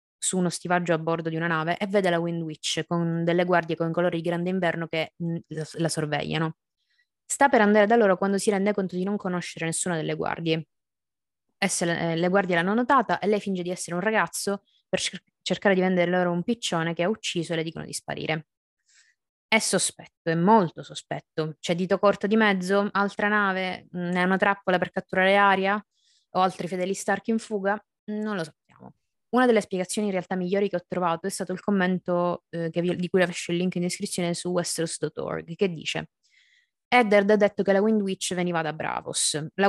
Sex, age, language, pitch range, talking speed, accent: female, 20-39, Italian, 165-200 Hz, 200 wpm, native